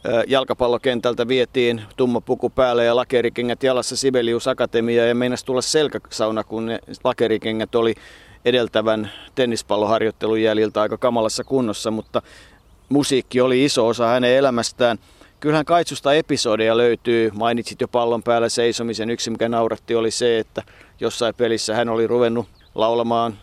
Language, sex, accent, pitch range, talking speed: Finnish, male, native, 115-130 Hz, 135 wpm